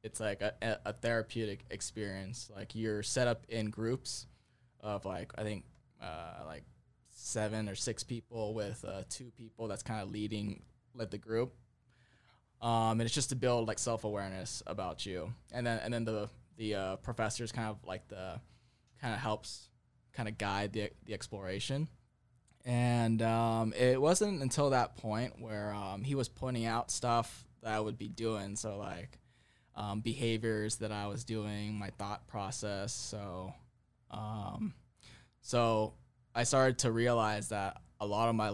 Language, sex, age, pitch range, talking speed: English, male, 20-39, 105-120 Hz, 165 wpm